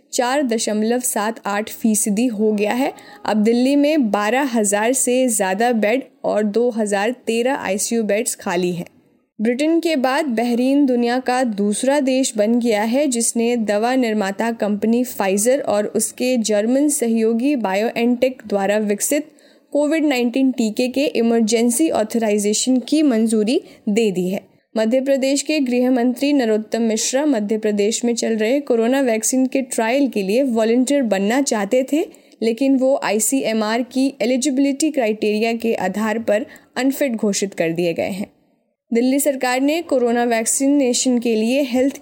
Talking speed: 145 wpm